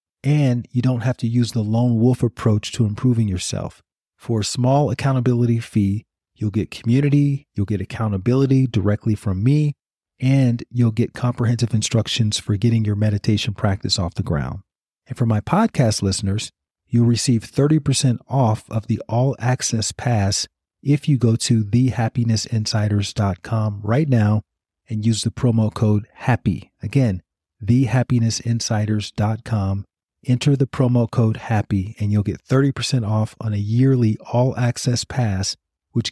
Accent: American